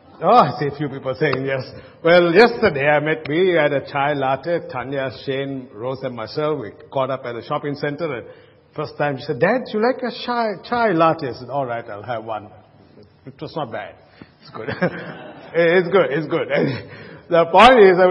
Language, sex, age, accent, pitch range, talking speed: English, male, 50-69, Indian, 145-190 Hz, 205 wpm